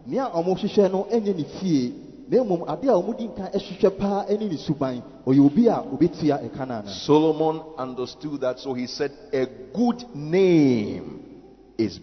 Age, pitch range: 50-69, 125-190 Hz